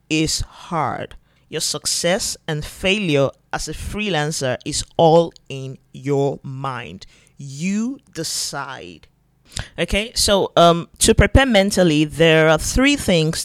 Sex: male